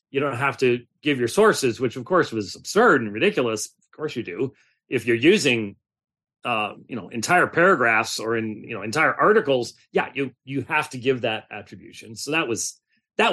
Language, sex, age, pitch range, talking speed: English, male, 40-59, 125-150 Hz, 200 wpm